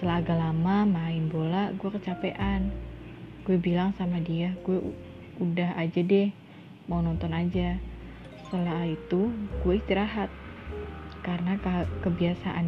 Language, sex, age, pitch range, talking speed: Indonesian, female, 20-39, 170-195 Hz, 120 wpm